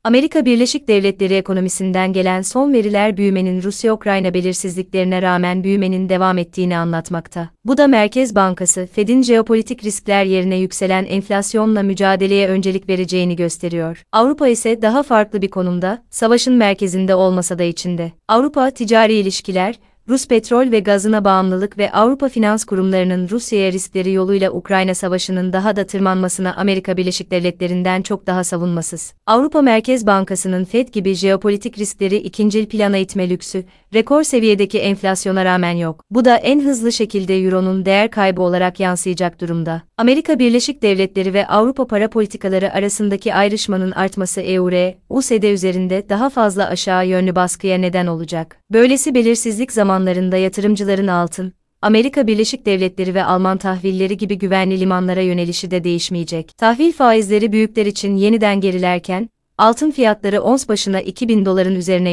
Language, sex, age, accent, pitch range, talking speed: Turkish, female, 30-49, native, 185-220 Hz, 140 wpm